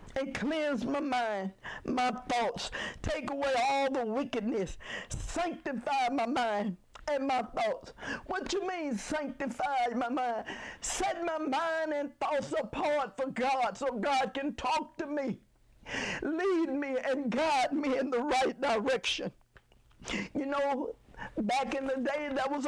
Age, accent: 50-69, American